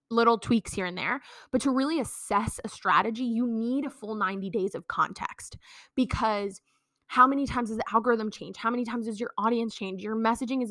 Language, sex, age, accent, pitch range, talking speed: English, female, 20-39, American, 220-265 Hz, 205 wpm